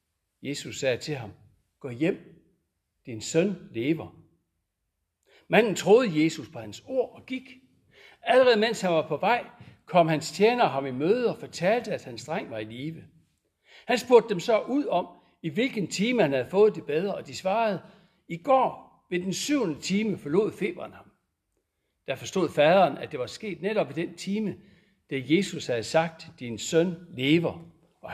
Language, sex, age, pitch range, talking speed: Danish, male, 60-79, 145-215 Hz, 175 wpm